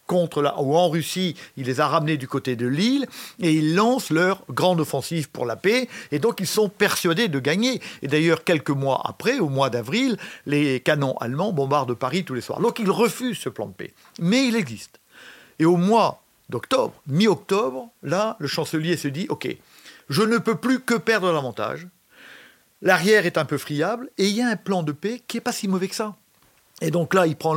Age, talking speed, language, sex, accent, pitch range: 50-69, 220 wpm, French, male, French, 140-195 Hz